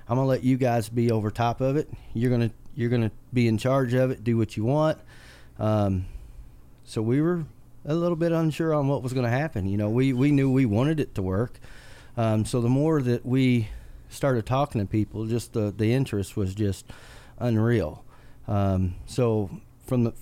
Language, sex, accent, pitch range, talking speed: English, male, American, 105-125 Hz, 200 wpm